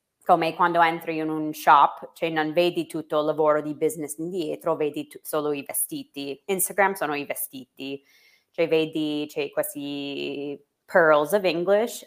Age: 20-39